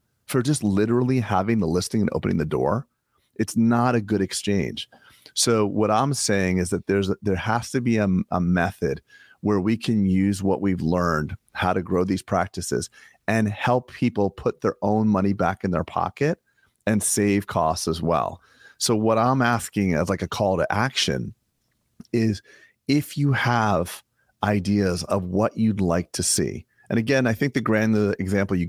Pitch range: 95-115 Hz